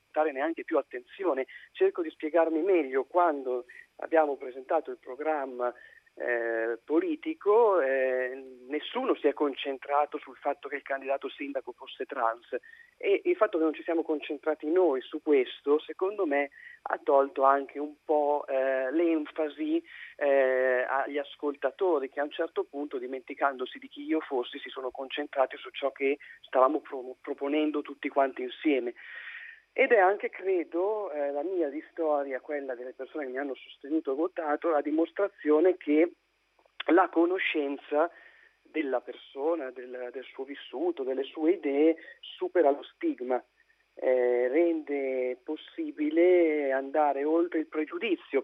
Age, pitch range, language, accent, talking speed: 40-59, 135-200 Hz, Italian, native, 140 wpm